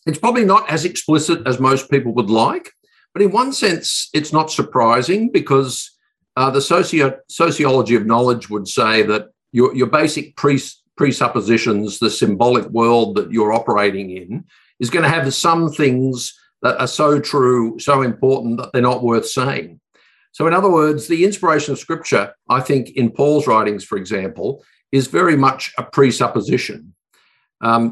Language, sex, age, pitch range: English, male, 50-69, 120-165 Hz